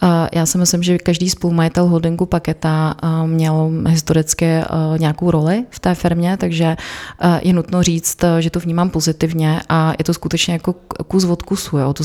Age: 30-49